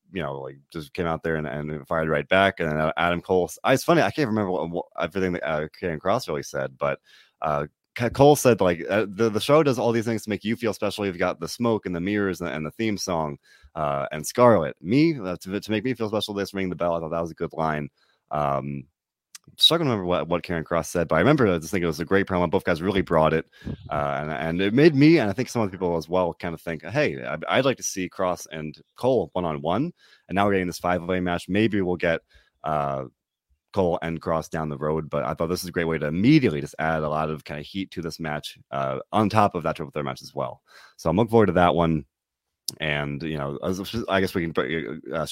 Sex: male